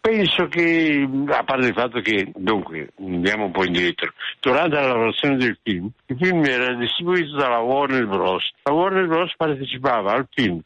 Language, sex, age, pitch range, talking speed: Italian, male, 60-79, 105-150 Hz, 170 wpm